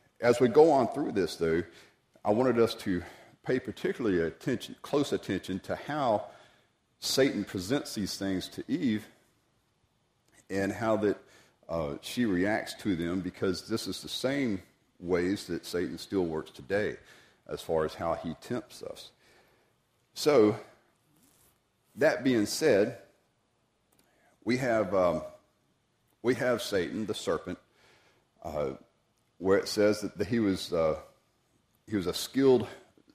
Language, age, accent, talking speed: English, 50-69, American, 135 wpm